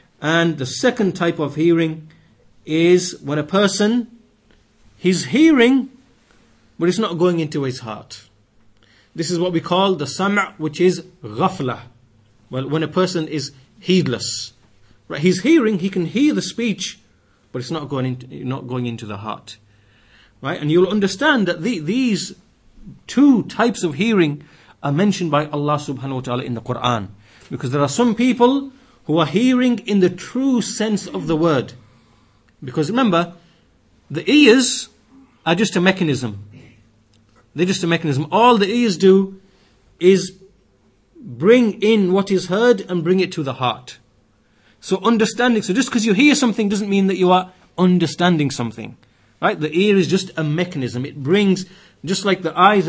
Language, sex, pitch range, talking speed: English, male, 130-195 Hz, 165 wpm